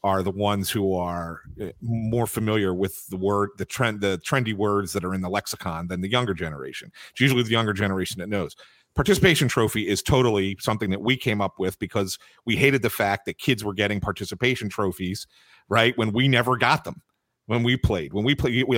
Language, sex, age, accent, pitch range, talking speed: English, male, 40-59, American, 100-135 Hz, 210 wpm